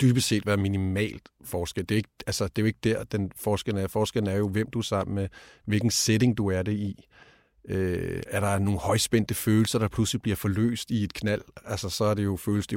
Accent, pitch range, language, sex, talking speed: native, 100-115 Hz, Danish, male, 230 wpm